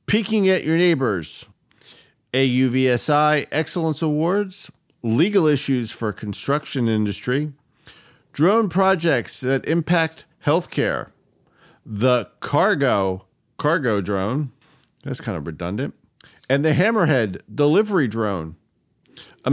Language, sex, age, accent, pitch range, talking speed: English, male, 50-69, American, 115-155 Hz, 95 wpm